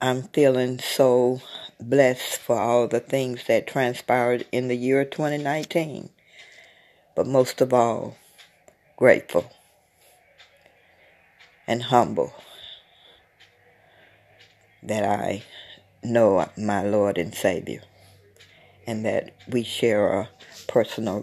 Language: English